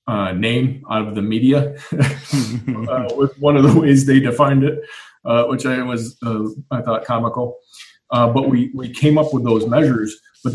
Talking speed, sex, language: 180 wpm, male, English